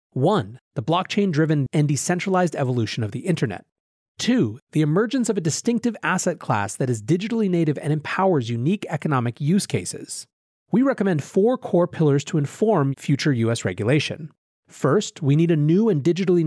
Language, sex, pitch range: English, male, 140-190 Hz